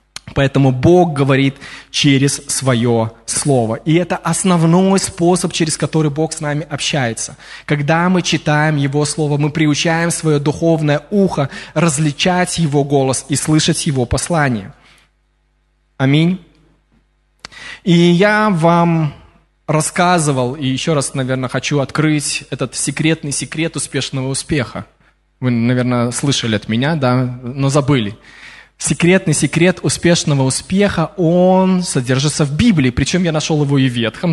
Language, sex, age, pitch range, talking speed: Russian, male, 20-39, 135-170 Hz, 125 wpm